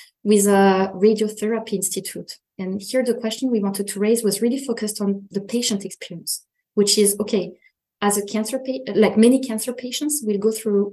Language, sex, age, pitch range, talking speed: English, female, 20-39, 190-220 Hz, 180 wpm